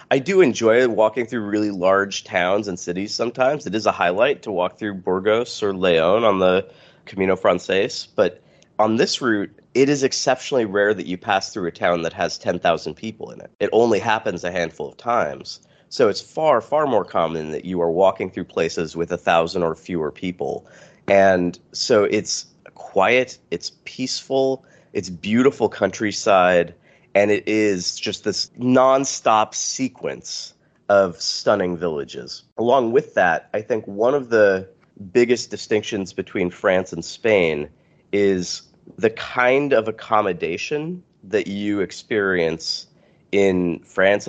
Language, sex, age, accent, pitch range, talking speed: English, male, 30-49, American, 90-115 Hz, 155 wpm